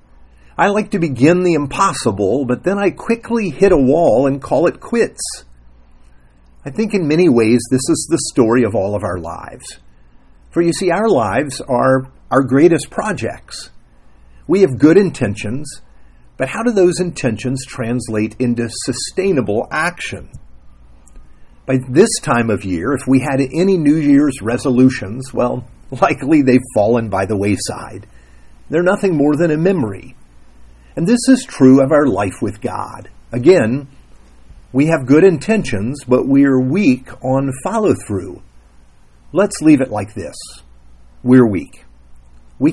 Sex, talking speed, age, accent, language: male, 150 wpm, 50-69, American, English